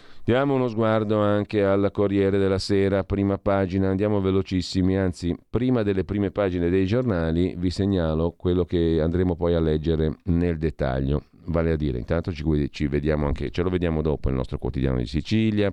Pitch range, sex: 80-105 Hz, male